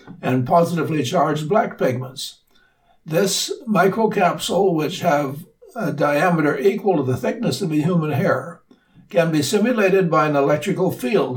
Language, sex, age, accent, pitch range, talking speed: English, male, 60-79, American, 135-180 Hz, 135 wpm